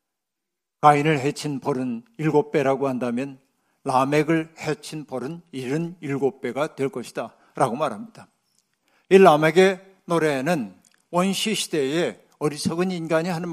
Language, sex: Korean, male